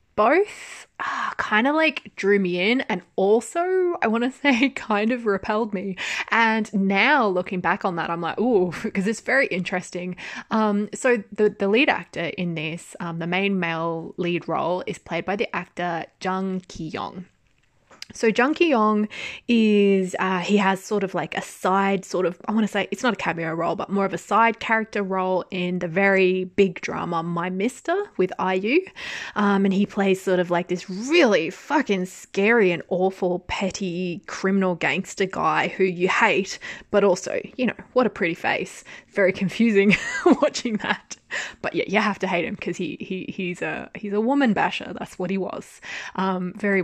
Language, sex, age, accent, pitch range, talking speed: English, female, 20-39, Australian, 180-225 Hz, 185 wpm